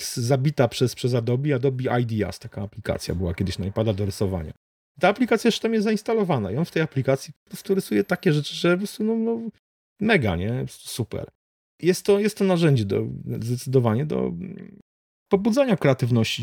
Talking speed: 180 wpm